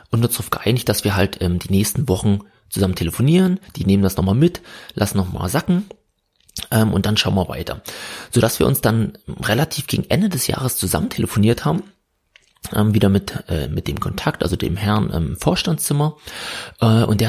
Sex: male